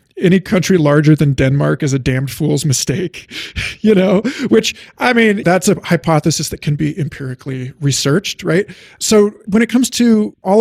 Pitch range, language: 135-170 Hz, English